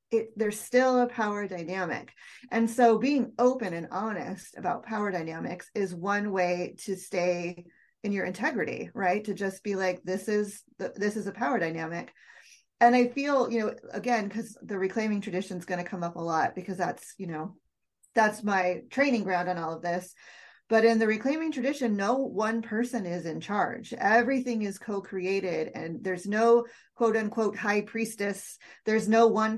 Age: 30-49